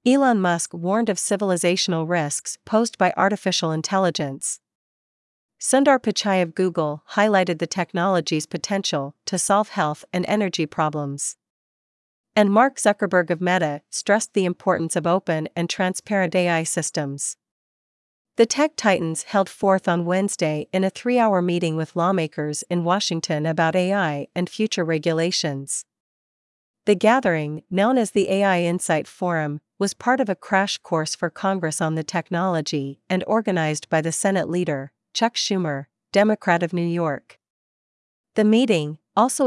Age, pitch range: 40-59, 160-195 Hz